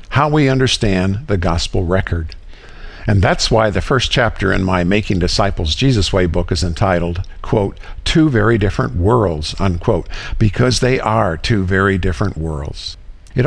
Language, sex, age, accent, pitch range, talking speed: English, male, 50-69, American, 90-130 Hz, 155 wpm